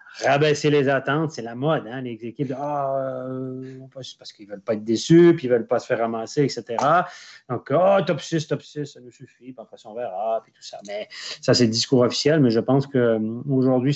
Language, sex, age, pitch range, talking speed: French, male, 30-49, 115-140 Hz, 230 wpm